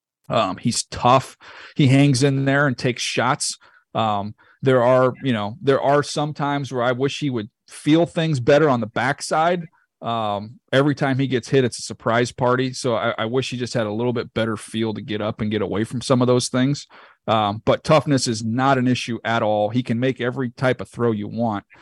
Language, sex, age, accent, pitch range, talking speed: English, male, 40-59, American, 110-135 Hz, 225 wpm